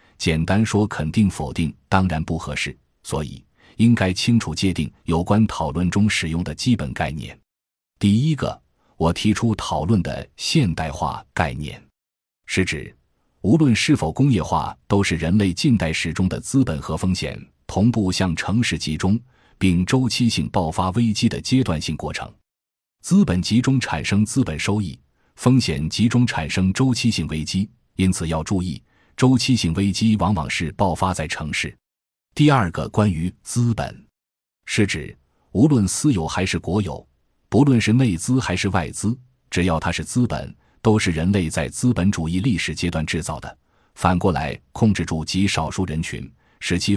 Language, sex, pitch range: Chinese, male, 80-115 Hz